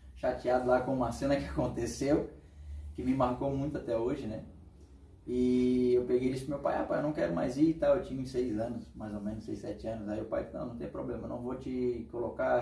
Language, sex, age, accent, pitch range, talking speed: Portuguese, male, 20-39, Brazilian, 105-150 Hz, 255 wpm